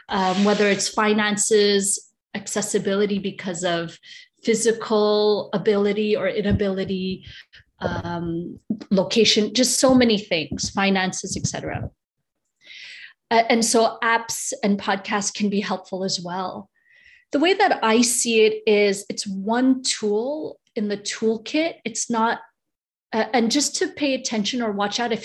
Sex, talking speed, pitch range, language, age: female, 135 wpm, 200-245 Hz, English, 30-49